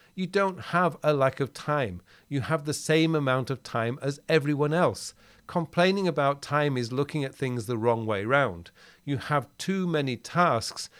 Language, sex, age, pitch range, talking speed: English, male, 40-59, 125-160 Hz, 180 wpm